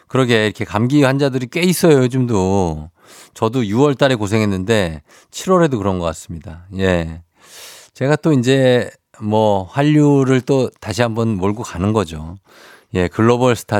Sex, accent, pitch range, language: male, native, 100-135 Hz, Korean